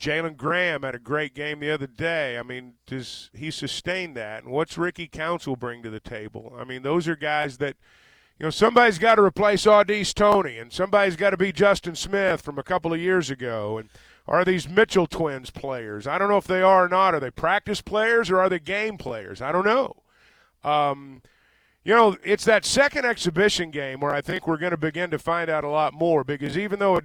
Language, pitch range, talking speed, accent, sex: English, 145-190 Hz, 225 wpm, American, male